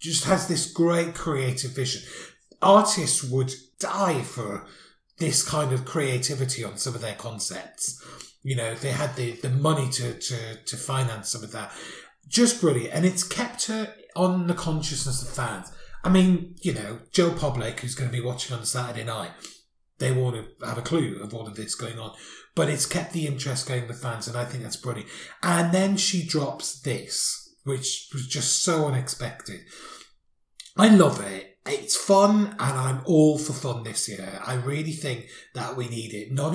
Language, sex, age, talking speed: English, male, 30-49, 185 wpm